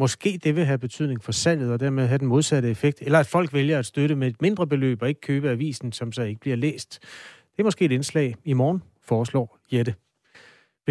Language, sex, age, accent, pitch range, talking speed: Danish, male, 30-49, native, 120-145 Hz, 230 wpm